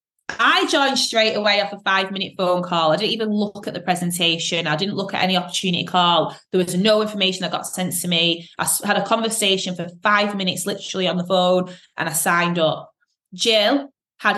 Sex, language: female, English